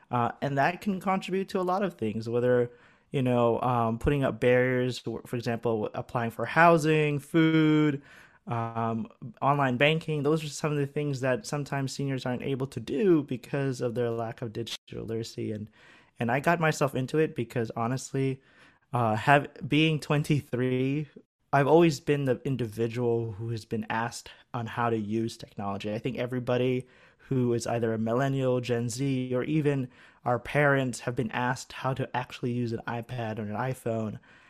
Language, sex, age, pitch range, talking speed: English, male, 20-39, 120-145 Hz, 170 wpm